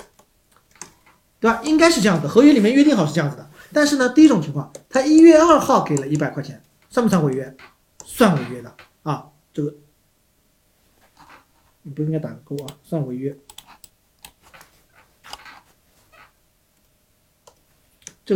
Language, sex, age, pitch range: Chinese, male, 50-69, 155-215 Hz